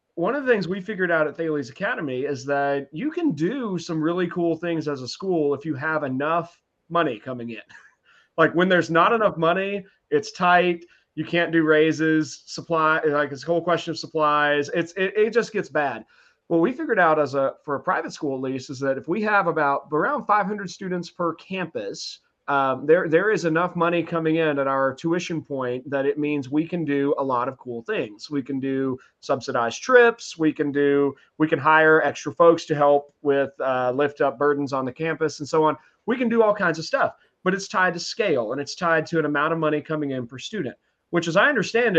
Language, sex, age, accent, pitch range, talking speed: English, male, 30-49, American, 140-175 Hz, 220 wpm